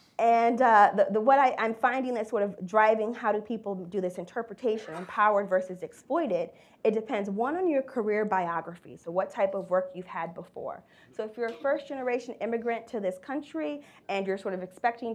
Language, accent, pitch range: English, American, 185-245 Hz